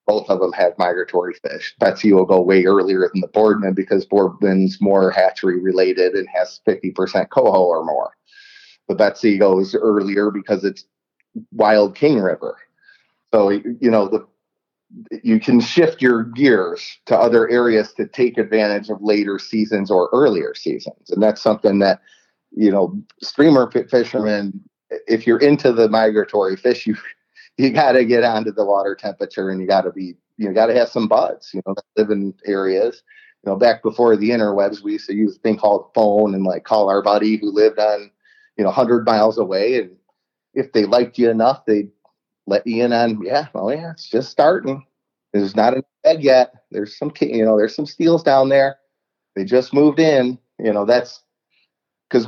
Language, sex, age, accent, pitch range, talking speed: English, male, 30-49, American, 105-150 Hz, 185 wpm